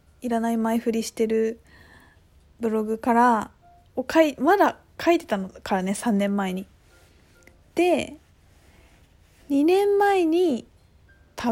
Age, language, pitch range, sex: 20-39, Japanese, 200-265 Hz, female